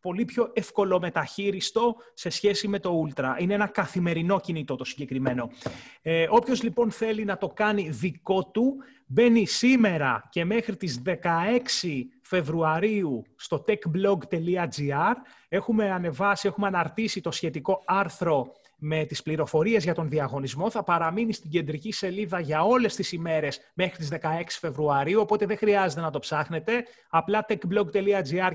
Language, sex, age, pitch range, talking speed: Greek, male, 30-49, 165-225 Hz, 140 wpm